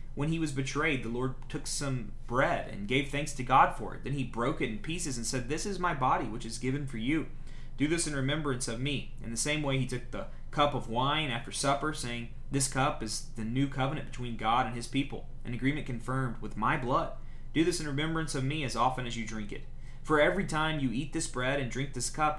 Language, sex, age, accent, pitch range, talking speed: English, male, 30-49, American, 115-140 Hz, 245 wpm